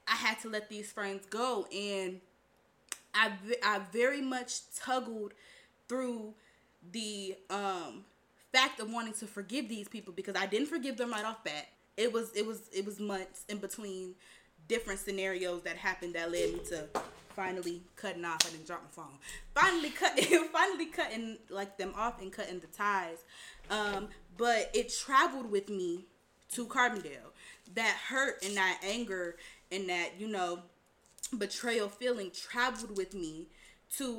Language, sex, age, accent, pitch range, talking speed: English, female, 20-39, American, 190-230 Hz, 160 wpm